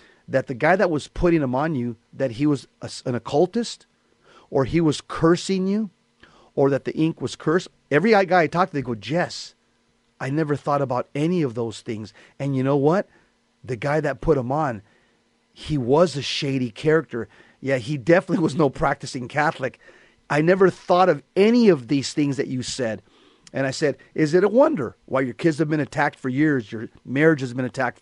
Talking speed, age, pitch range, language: 200 wpm, 40-59, 135-190 Hz, English